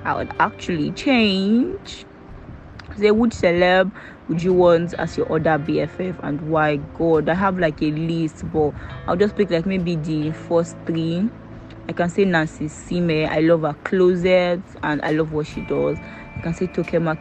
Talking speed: 175 wpm